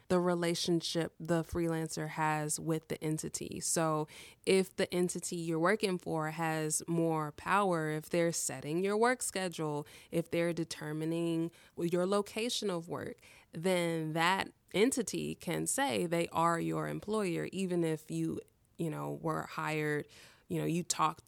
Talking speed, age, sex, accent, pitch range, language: 145 wpm, 20-39, female, American, 165-200 Hz, English